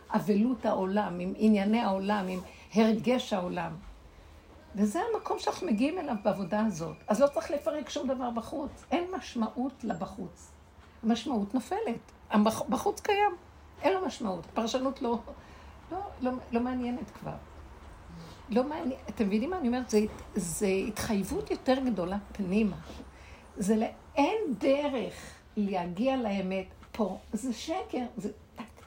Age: 60-79